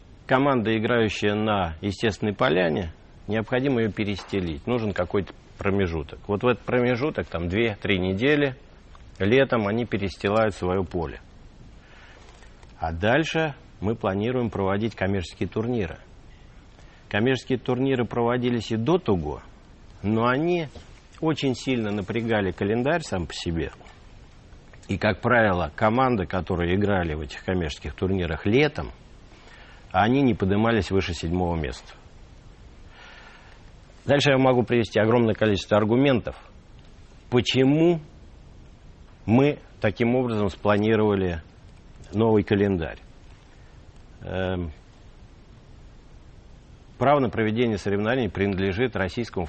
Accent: native